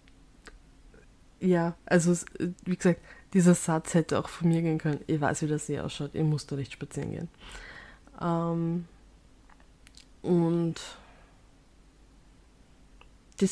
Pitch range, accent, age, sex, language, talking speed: 175-205 Hz, German, 20-39, female, German, 120 wpm